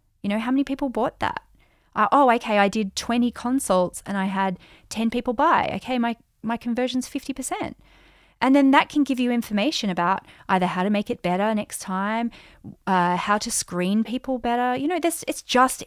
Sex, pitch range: female, 195-265 Hz